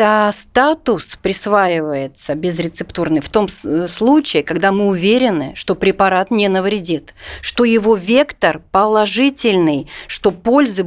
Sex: female